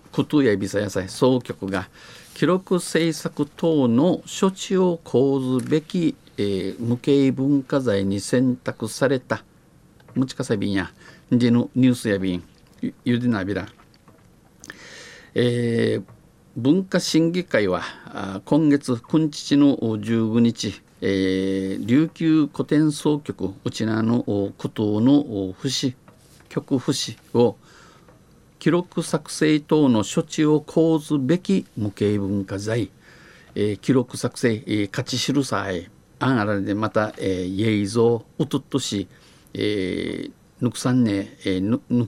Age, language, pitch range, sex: 50-69, Japanese, 100-150 Hz, male